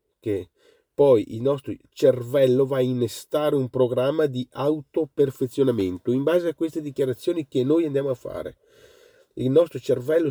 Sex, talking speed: male, 145 wpm